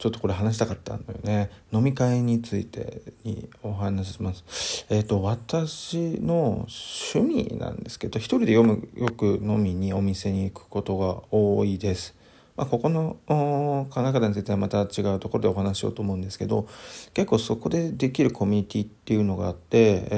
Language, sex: Japanese, male